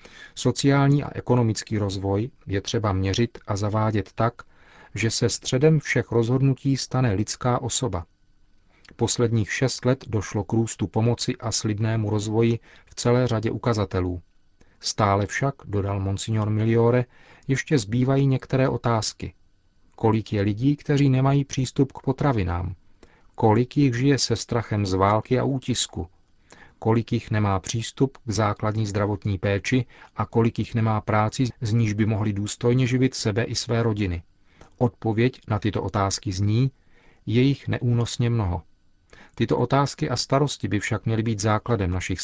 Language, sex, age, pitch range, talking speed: Czech, male, 40-59, 100-120 Hz, 140 wpm